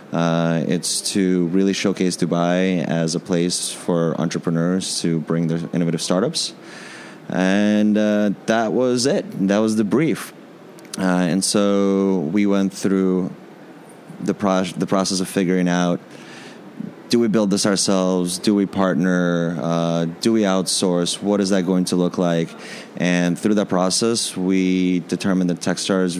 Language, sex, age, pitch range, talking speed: English, male, 20-39, 85-95 Hz, 145 wpm